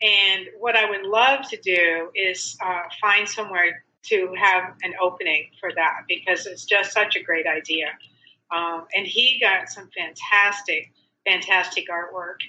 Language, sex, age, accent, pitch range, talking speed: English, female, 50-69, American, 180-230 Hz, 155 wpm